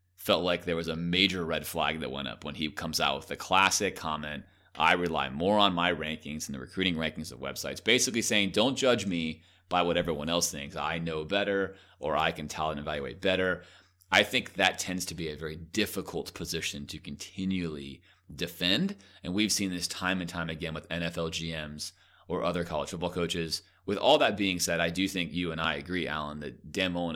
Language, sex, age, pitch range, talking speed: English, male, 30-49, 80-95 Hz, 210 wpm